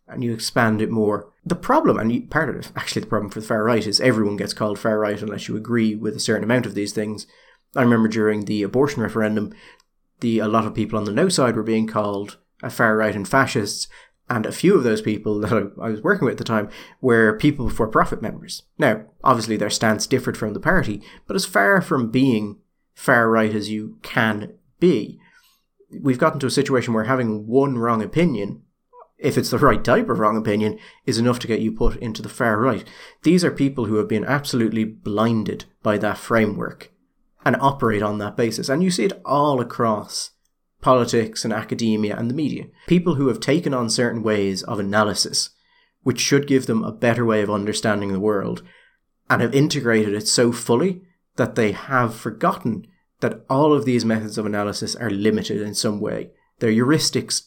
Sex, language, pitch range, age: male, English, 105-130 Hz, 30-49